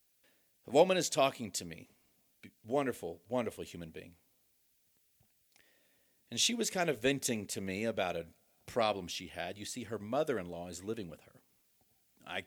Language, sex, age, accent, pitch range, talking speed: English, male, 40-59, American, 95-125 Hz, 155 wpm